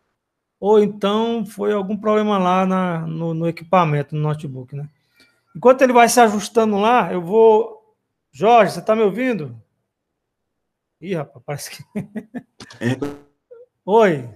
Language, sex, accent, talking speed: Portuguese, male, Brazilian, 130 wpm